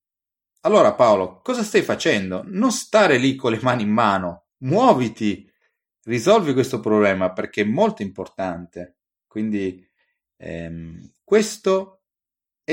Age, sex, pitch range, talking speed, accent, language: 30-49, male, 100-135 Hz, 120 wpm, native, Italian